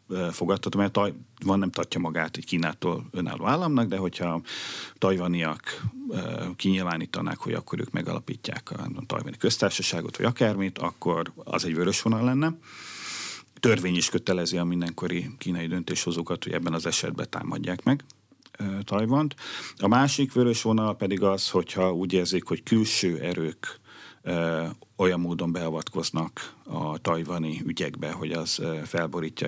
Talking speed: 130 wpm